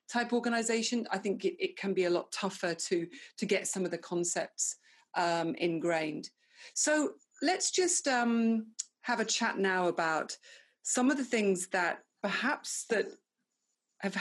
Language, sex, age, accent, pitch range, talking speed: English, female, 40-59, British, 185-255 Hz, 150 wpm